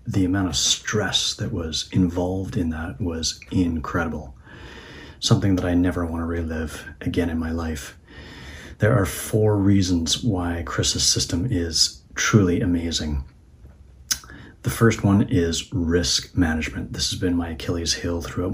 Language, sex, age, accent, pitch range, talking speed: English, male, 40-59, American, 85-100 Hz, 145 wpm